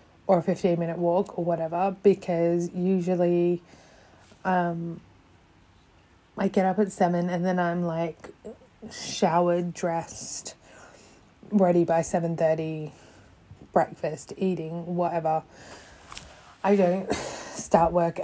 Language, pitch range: English, 165-185 Hz